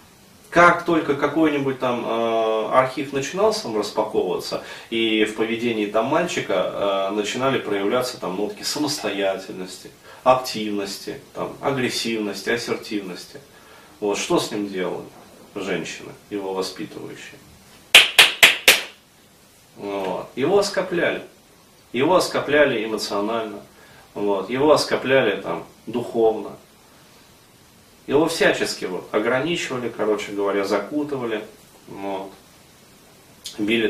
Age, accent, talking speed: 30-49, native, 80 wpm